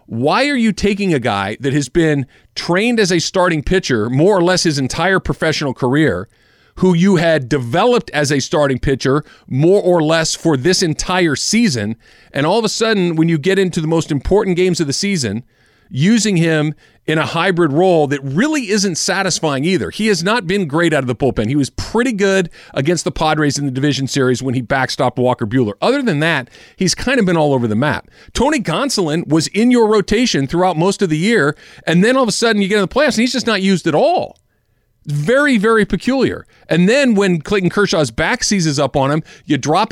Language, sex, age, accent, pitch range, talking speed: English, male, 40-59, American, 145-200 Hz, 215 wpm